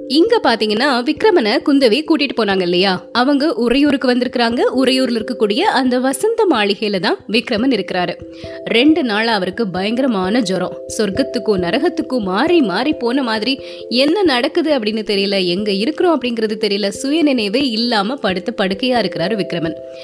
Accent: native